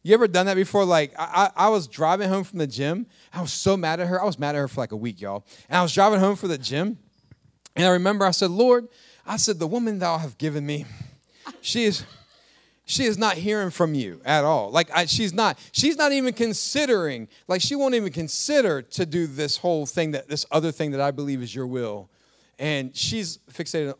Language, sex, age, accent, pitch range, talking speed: English, male, 30-49, American, 130-195 Hz, 235 wpm